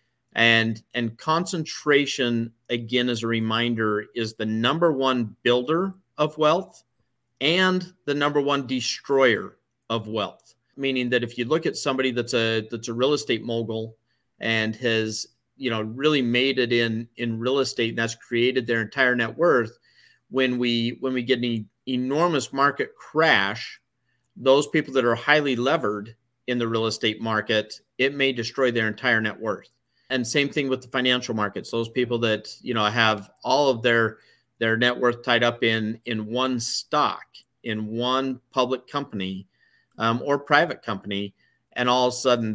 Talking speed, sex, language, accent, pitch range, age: 170 wpm, male, English, American, 115-130 Hz, 40-59